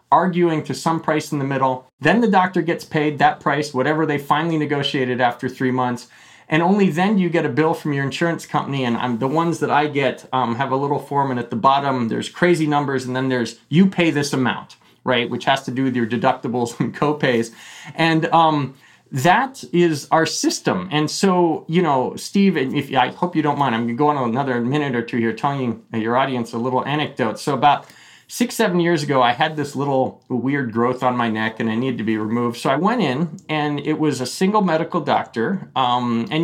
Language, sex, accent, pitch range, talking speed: English, male, American, 125-160 Hz, 230 wpm